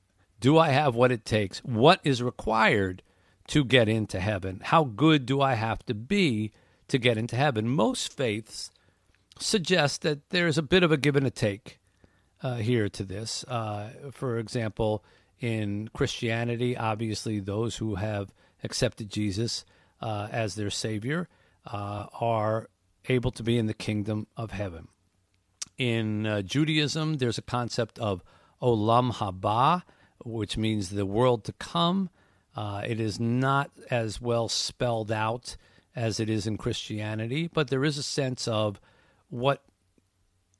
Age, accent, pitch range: 50-69, American, 100-125 Hz